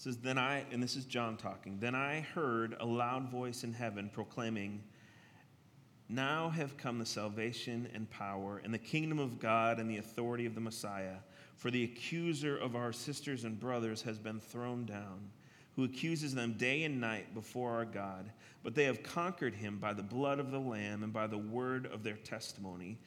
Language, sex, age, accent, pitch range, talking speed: English, male, 40-59, American, 110-135 Hz, 190 wpm